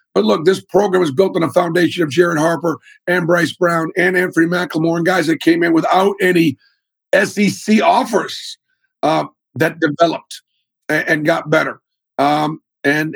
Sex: male